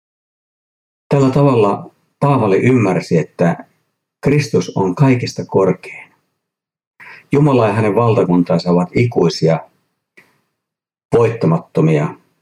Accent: native